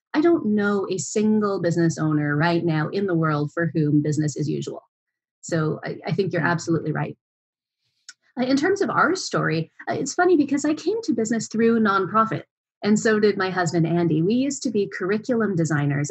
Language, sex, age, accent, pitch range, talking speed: English, female, 30-49, American, 165-245 Hz, 195 wpm